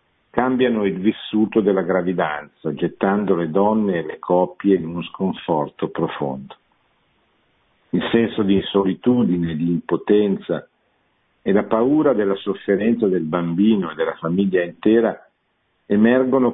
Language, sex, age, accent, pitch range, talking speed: Italian, male, 50-69, native, 90-110 Hz, 120 wpm